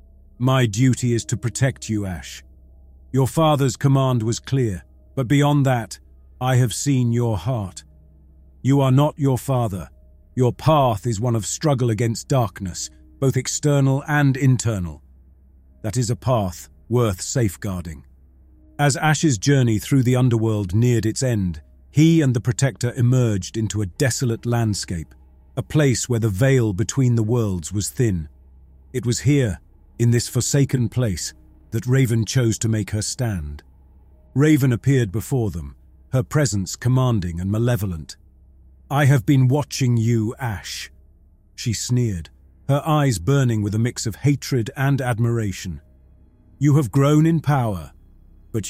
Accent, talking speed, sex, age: British, 145 wpm, male, 40-59